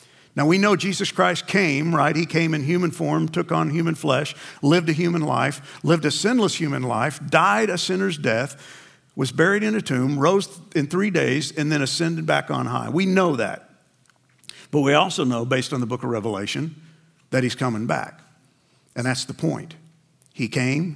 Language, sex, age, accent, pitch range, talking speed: English, male, 50-69, American, 130-170 Hz, 190 wpm